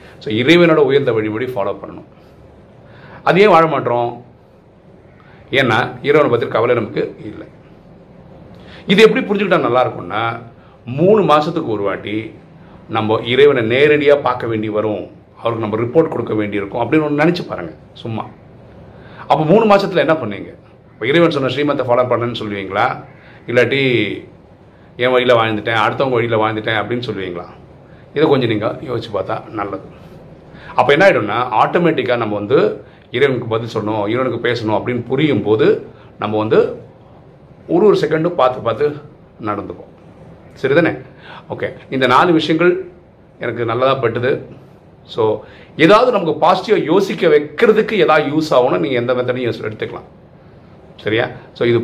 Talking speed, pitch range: 125 wpm, 110-170 Hz